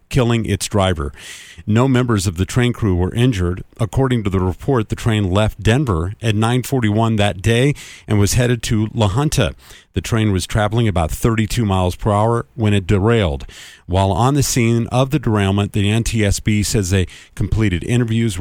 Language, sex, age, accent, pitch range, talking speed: English, male, 50-69, American, 95-115 Hz, 175 wpm